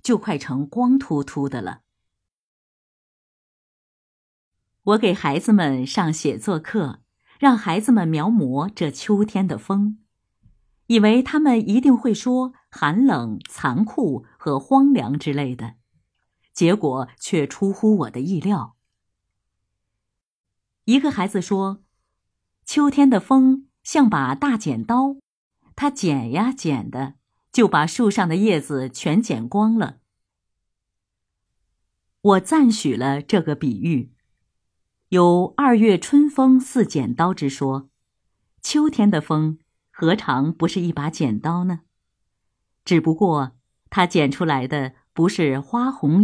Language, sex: Chinese, female